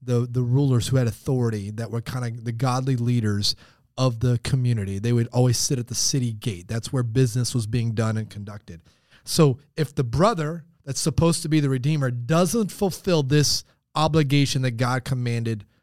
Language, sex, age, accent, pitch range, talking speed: English, male, 30-49, American, 125-175 Hz, 185 wpm